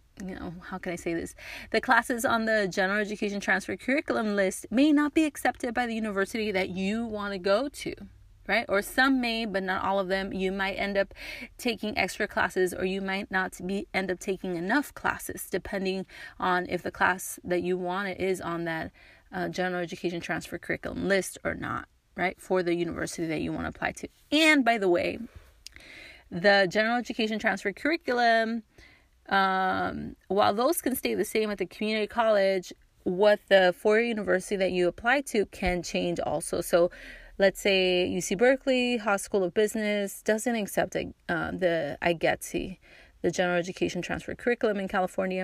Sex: female